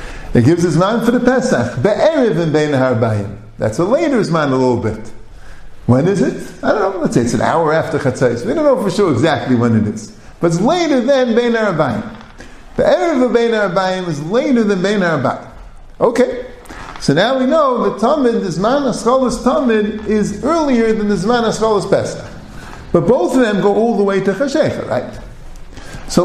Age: 50-69